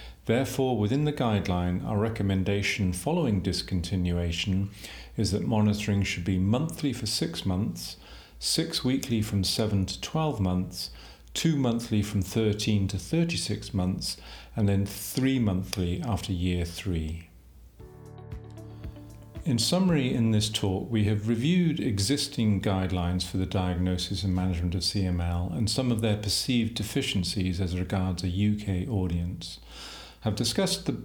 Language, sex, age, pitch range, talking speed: English, male, 40-59, 90-115 Hz, 135 wpm